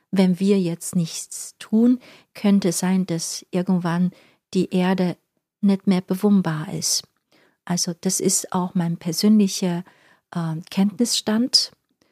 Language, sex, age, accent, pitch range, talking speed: German, female, 40-59, German, 170-210 Hz, 120 wpm